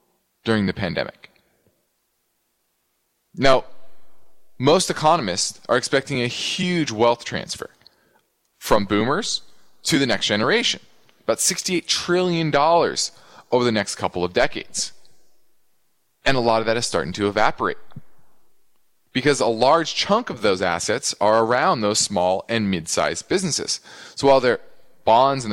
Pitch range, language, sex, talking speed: 110-145 Hz, English, male, 130 wpm